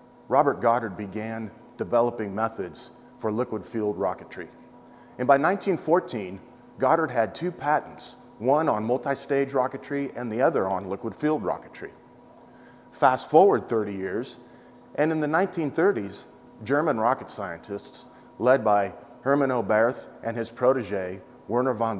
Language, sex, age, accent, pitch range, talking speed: English, male, 40-59, American, 105-130 Hz, 125 wpm